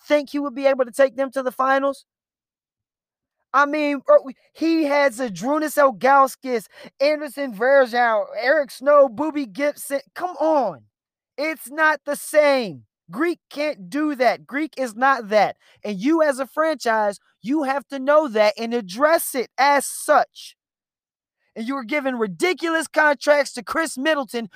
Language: English